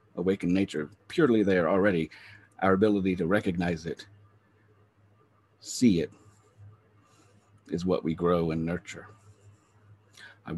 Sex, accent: male, American